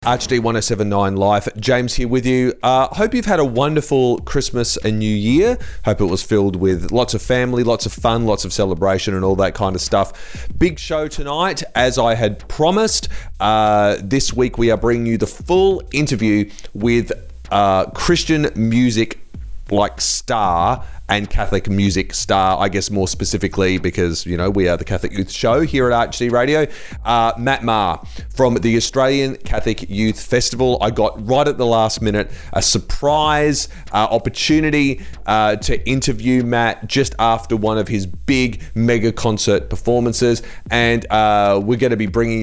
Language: English